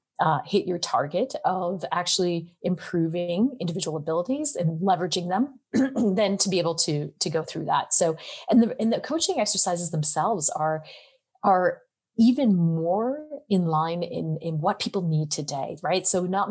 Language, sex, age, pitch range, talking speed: German, female, 30-49, 155-200 Hz, 160 wpm